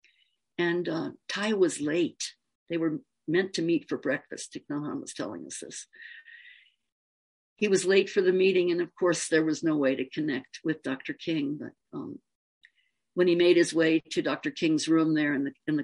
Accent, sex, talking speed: American, female, 185 wpm